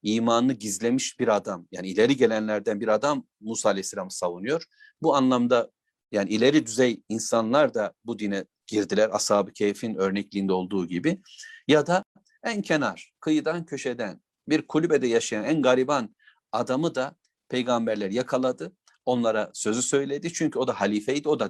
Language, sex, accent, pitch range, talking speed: Turkish, male, native, 115-155 Hz, 140 wpm